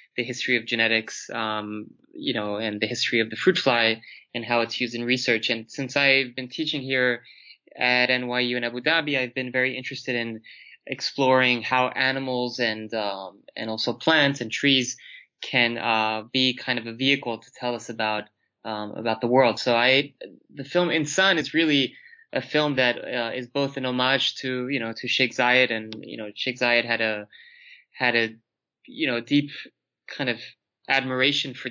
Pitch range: 115-135 Hz